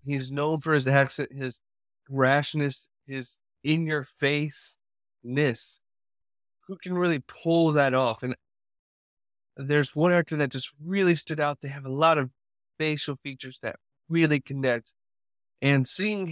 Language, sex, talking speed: English, male, 130 wpm